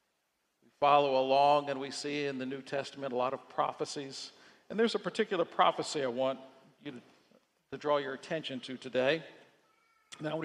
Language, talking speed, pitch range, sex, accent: English, 165 wpm, 135-165 Hz, male, American